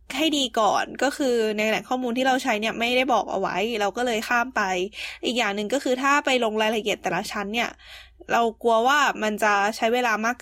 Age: 20-39